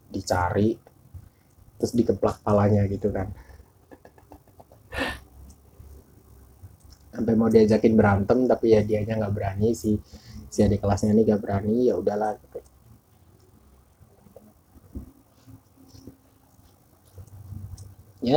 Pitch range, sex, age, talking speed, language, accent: 100-110 Hz, male, 20-39, 80 wpm, Indonesian, native